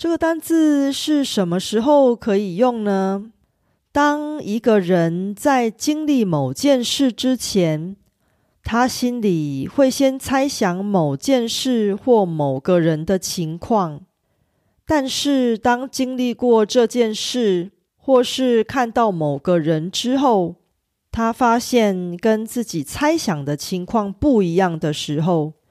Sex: female